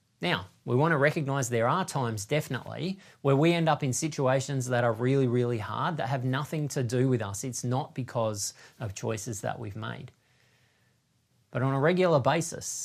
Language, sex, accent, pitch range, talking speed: English, male, Australian, 115-135 Hz, 185 wpm